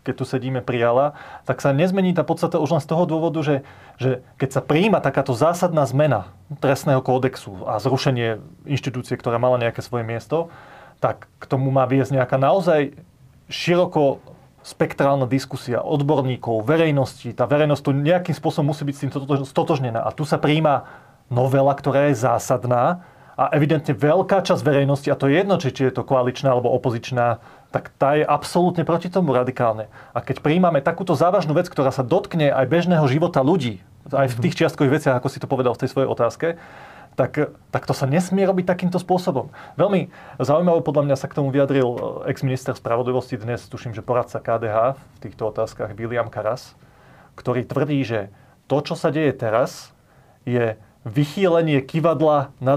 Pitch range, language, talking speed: 125-150 Hz, Slovak, 170 wpm